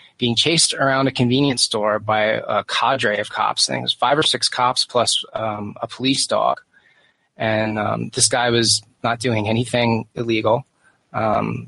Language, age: English, 20-39